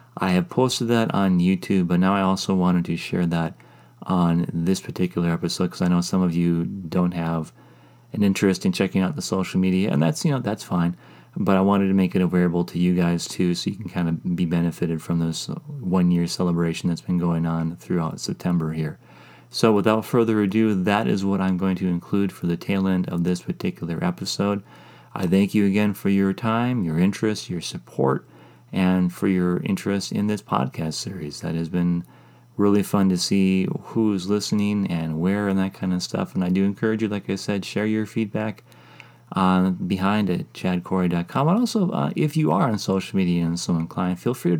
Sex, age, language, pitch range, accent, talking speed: male, 30-49, English, 85-105 Hz, American, 205 wpm